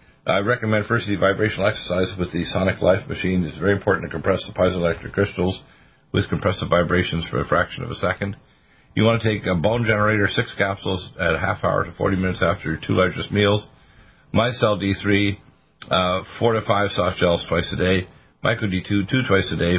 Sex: male